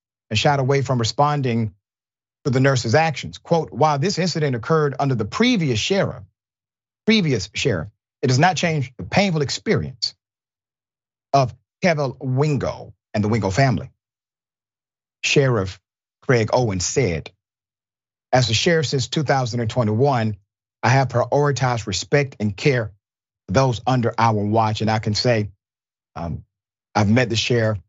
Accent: American